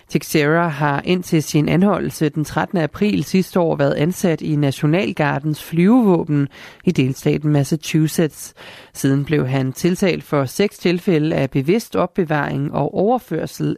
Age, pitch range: 30-49, 145-180 Hz